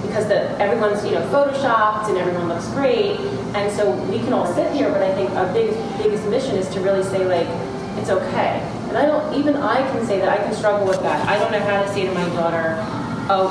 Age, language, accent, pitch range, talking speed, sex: 30-49, English, American, 185-215 Hz, 235 wpm, female